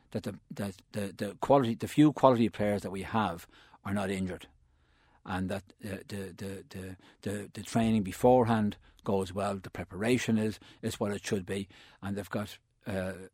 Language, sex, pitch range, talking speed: English, male, 95-110 Hz, 175 wpm